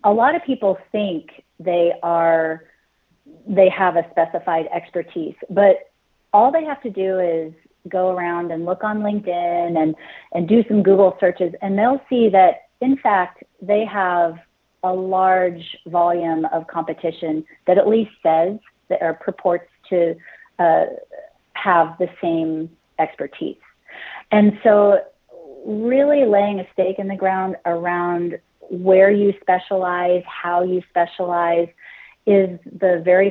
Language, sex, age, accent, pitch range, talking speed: English, female, 30-49, American, 170-200 Hz, 135 wpm